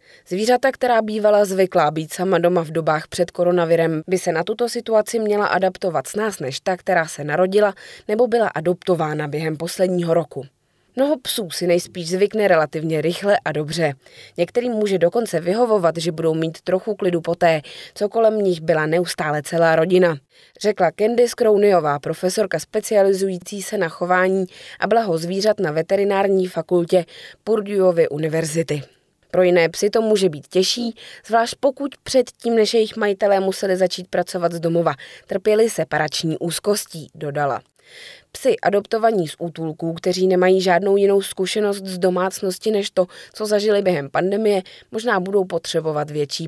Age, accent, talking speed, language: 20-39, native, 150 wpm, Czech